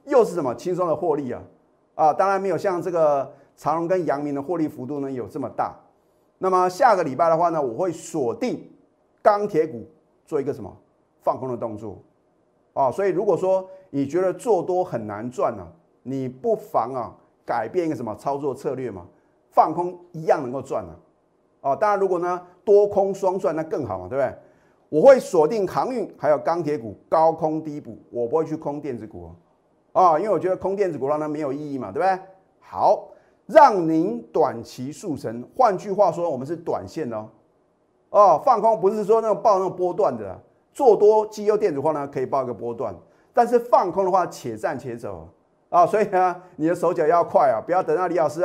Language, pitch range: Chinese, 140-190 Hz